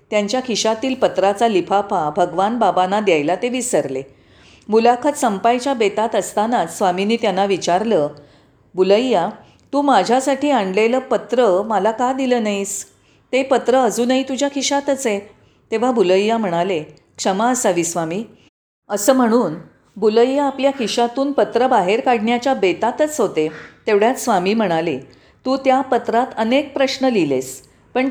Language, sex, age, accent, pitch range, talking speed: Marathi, female, 40-59, native, 195-255 Hz, 120 wpm